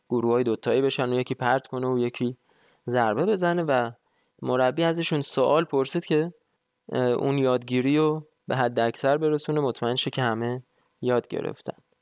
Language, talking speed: Persian, 150 wpm